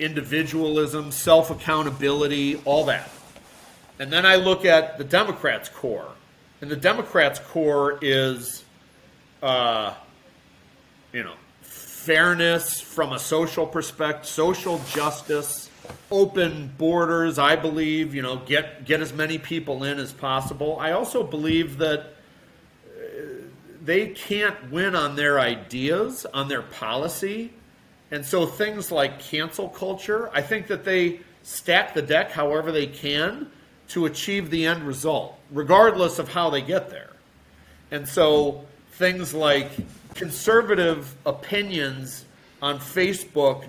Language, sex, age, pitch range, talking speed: English, male, 40-59, 145-180 Hz, 120 wpm